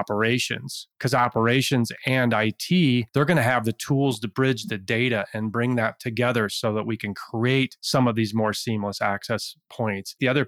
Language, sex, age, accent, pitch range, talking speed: English, male, 30-49, American, 110-130 Hz, 190 wpm